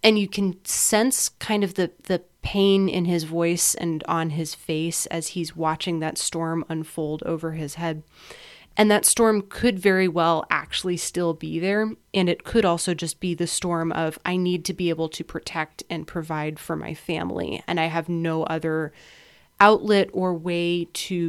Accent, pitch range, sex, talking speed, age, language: American, 165-195 Hz, female, 185 wpm, 30-49, English